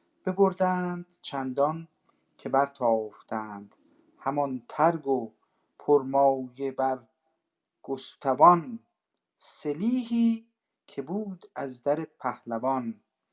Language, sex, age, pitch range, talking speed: Persian, male, 50-69, 125-170 Hz, 70 wpm